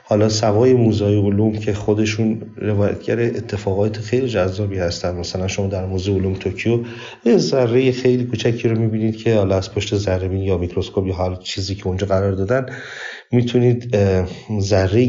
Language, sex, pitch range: Persian, male, 95-120 Hz